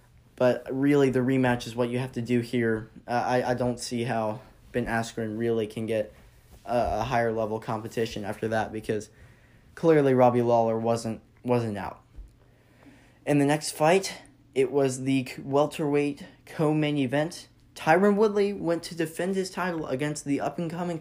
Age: 10-29